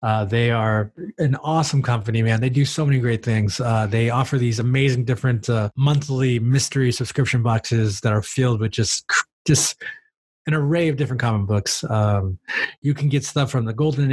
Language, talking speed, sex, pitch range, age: English, 185 wpm, male, 115-140 Hz, 20-39